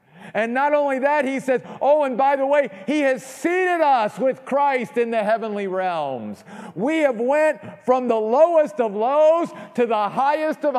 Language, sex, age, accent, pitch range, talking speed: English, male, 50-69, American, 165-225 Hz, 185 wpm